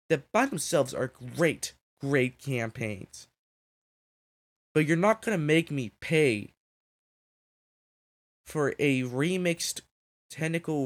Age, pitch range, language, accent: 20-39, 120-150 Hz, English, American